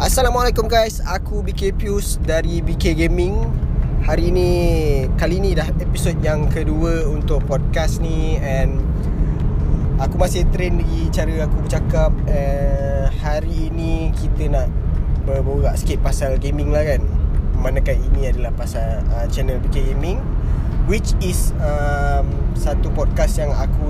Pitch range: 70-80 Hz